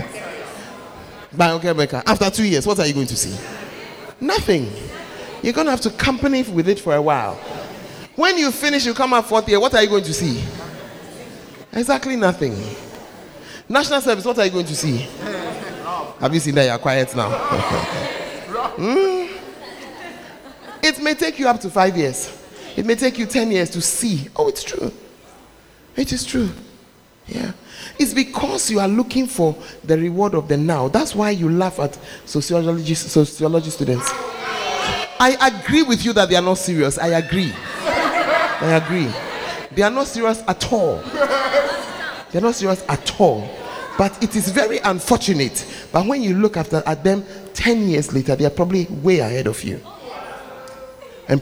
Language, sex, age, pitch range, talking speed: English, male, 30-49, 160-250 Hz, 170 wpm